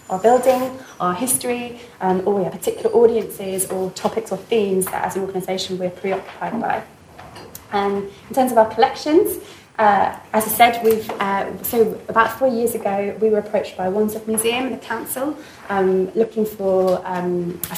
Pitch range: 200-245 Hz